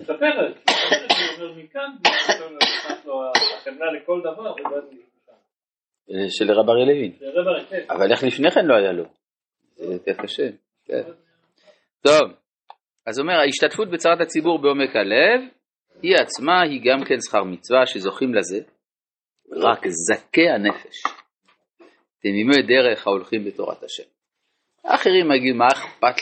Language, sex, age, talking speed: Hebrew, male, 40-59, 125 wpm